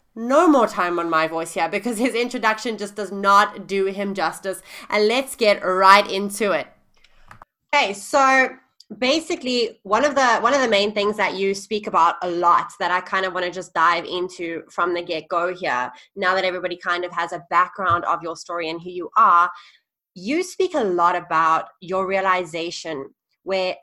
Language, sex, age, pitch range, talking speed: English, female, 20-39, 175-215 Hz, 190 wpm